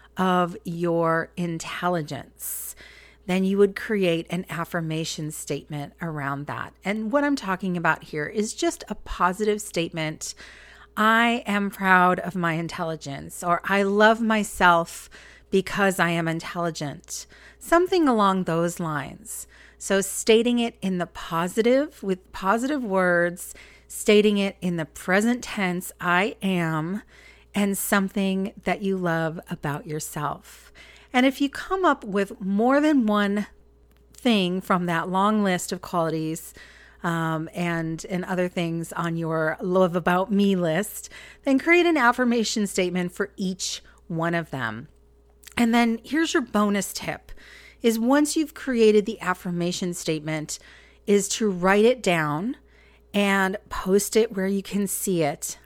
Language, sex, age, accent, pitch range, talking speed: English, female, 40-59, American, 170-210 Hz, 140 wpm